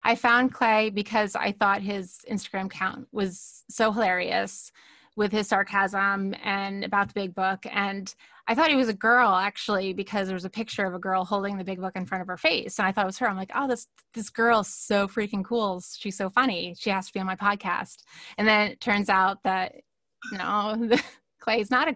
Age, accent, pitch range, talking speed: 20-39, American, 195-230 Hz, 225 wpm